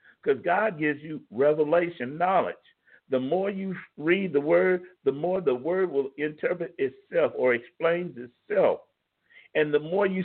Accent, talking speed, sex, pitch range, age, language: American, 150 wpm, male, 155-205 Hz, 50-69, English